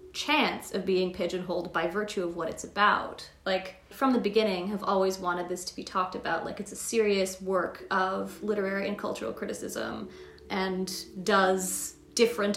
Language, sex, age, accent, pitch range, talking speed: English, female, 30-49, American, 180-220 Hz, 165 wpm